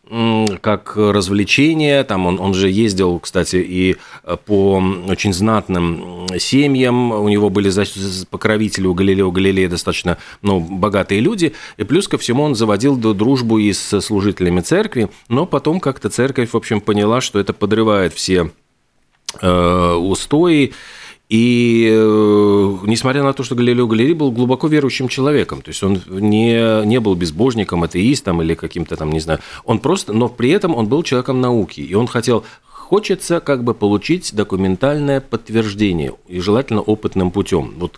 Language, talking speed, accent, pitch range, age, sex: Russian, 150 wpm, native, 90-120 Hz, 40-59, male